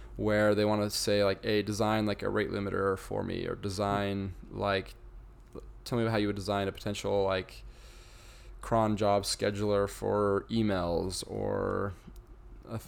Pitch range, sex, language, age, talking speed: 100-115 Hz, male, English, 20-39, 165 wpm